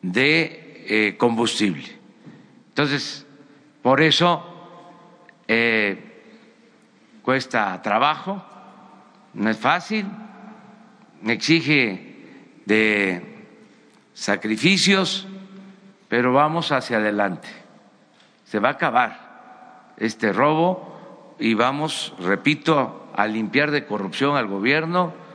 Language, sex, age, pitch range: Spanish, male, 50-69, 115-175 Hz